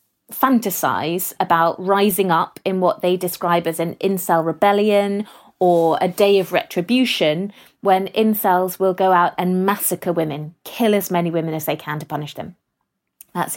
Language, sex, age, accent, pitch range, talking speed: English, female, 30-49, British, 170-205 Hz, 160 wpm